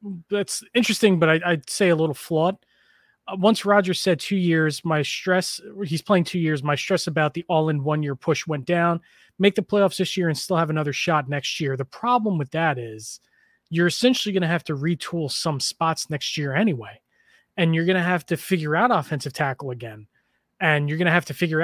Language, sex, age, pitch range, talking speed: English, male, 20-39, 145-185 Hz, 215 wpm